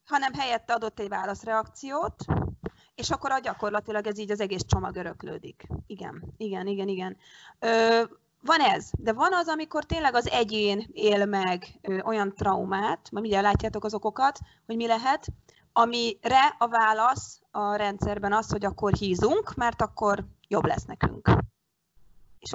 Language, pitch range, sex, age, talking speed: Hungarian, 200-240 Hz, female, 30-49, 150 wpm